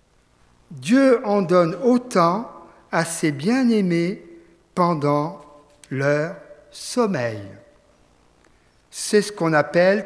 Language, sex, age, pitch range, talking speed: French, male, 50-69, 145-215 Hz, 85 wpm